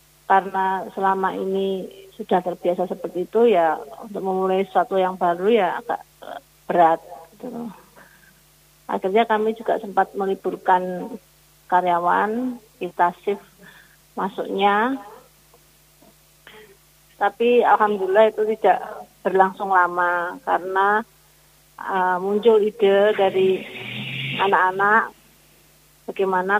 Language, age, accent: Indonesian, 30-49, native